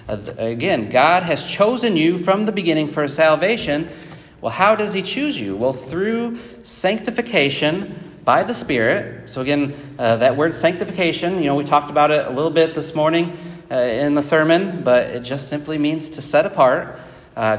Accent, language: American, English